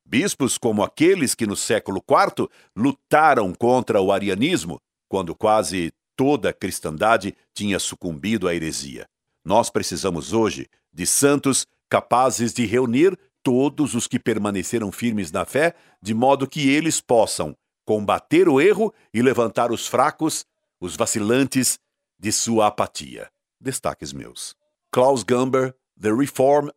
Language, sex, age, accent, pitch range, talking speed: Portuguese, male, 60-79, Brazilian, 105-140 Hz, 130 wpm